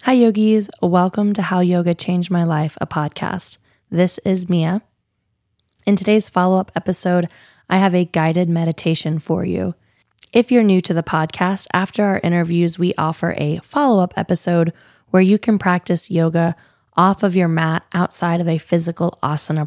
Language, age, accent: English, 20-39, American